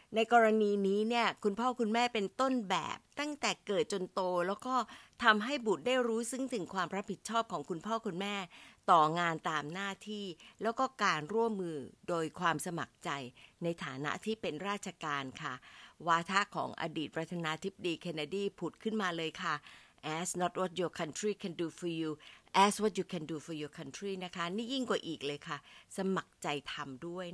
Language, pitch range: Thai, 170-230 Hz